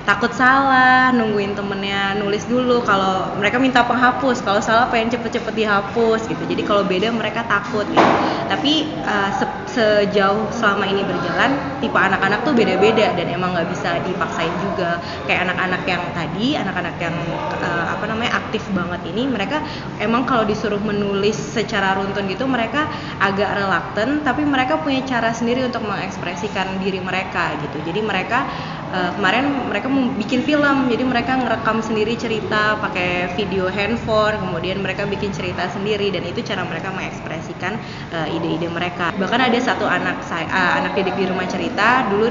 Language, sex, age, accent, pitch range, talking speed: English, female, 20-39, Indonesian, 185-230 Hz, 160 wpm